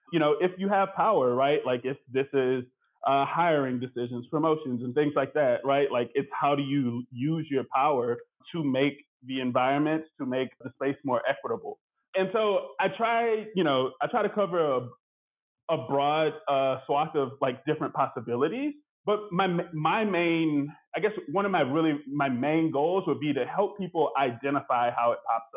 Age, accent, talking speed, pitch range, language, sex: 20-39, American, 185 wpm, 130-175 Hz, English, male